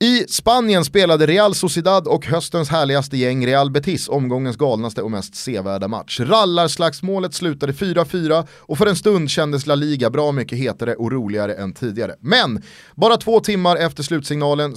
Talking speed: 165 wpm